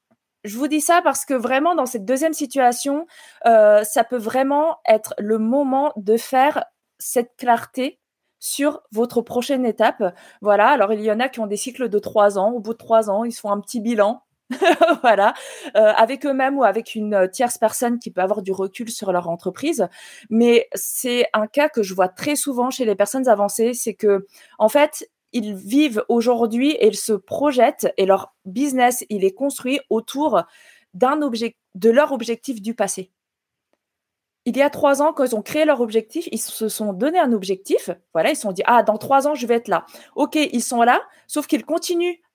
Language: French